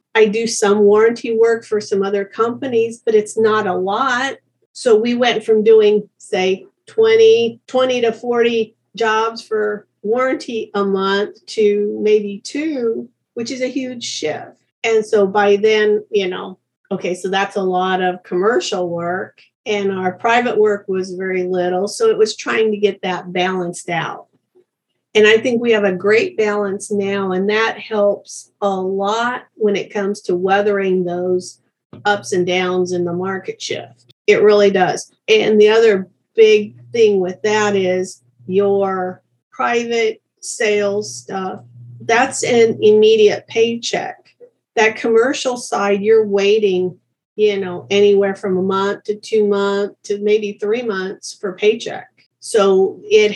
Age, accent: 50-69, American